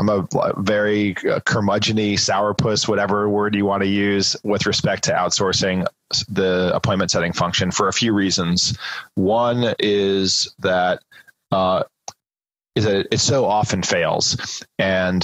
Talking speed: 135 wpm